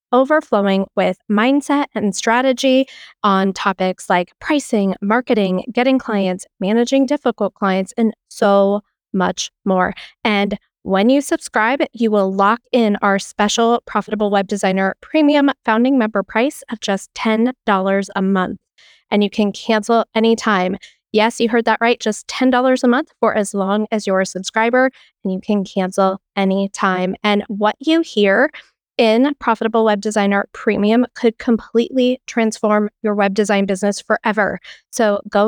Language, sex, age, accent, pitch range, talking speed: English, female, 20-39, American, 200-245 Hz, 145 wpm